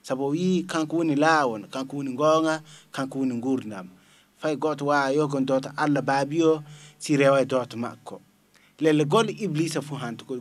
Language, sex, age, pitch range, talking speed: English, male, 30-49, 140-170 Hz, 115 wpm